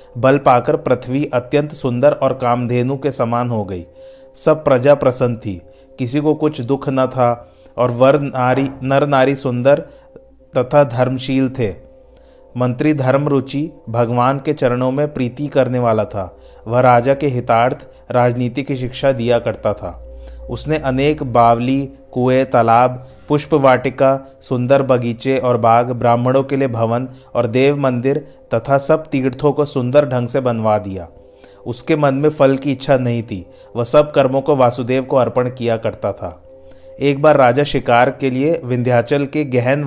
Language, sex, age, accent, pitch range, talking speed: Hindi, male, 30-49, native, 120-140 Hz, 155 wpm